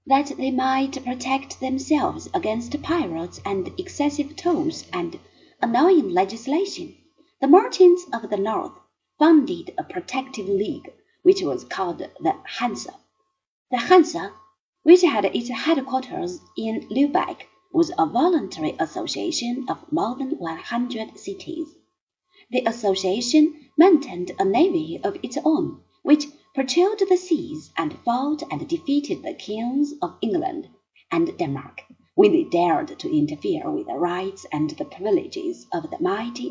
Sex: female